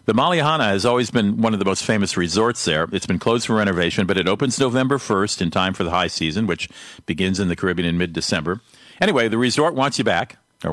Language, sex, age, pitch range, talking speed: English, male, 50-69, 90-120 Hz, 235 wpm